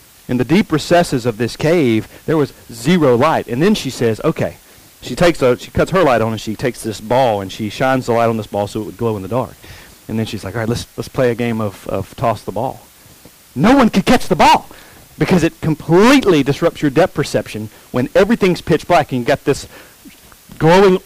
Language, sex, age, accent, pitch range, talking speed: English, male, 40-59, American, 120-175 Hz, 235 wpm